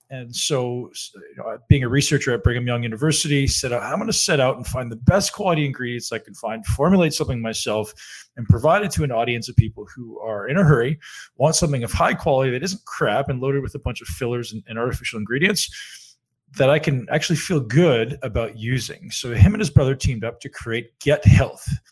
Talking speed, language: 215 wpm, English